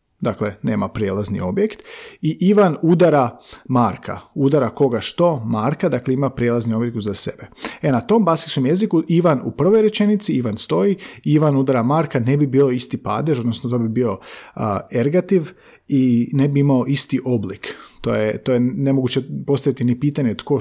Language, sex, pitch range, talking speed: Croatian, male, 115-150 Hz, 170 wpm